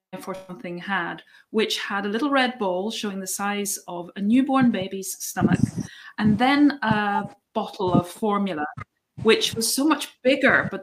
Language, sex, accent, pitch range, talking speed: English, female, British, 190-255 Hz, 160 wpm